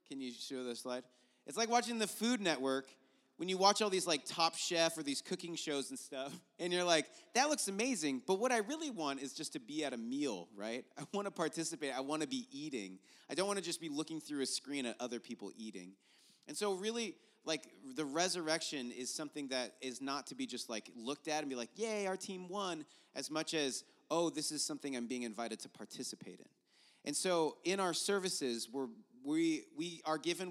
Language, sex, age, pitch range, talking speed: English, male, 30-49, 115-165 Hz, 225 wpm